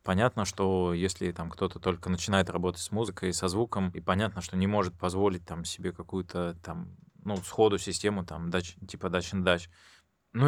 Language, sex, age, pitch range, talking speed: Russian, male, 20-39, 90-110 Hz, 170 wpm